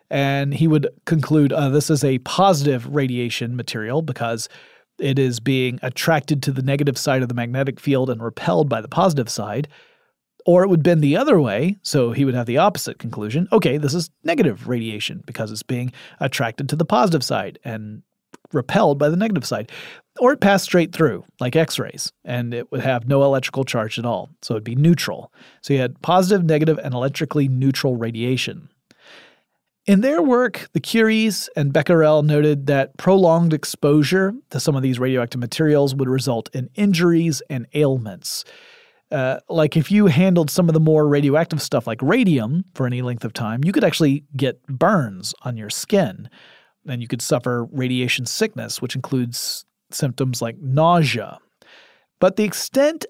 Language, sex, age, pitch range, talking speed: English, male, 40-59, 125-165 Hz, 175 wpm